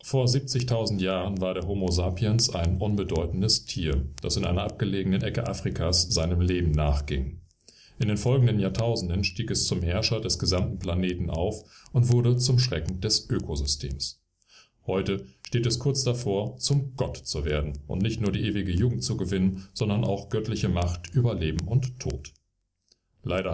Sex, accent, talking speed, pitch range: male, German, 160 wpm, 85-115 Hz